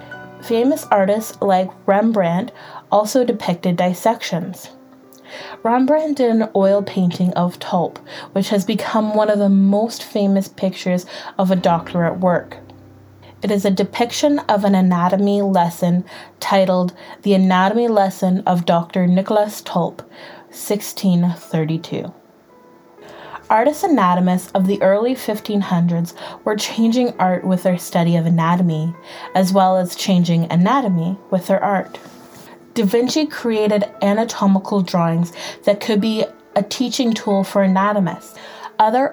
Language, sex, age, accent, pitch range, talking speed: English, female, 20-39, American, 175-210 Hz, 125 wpm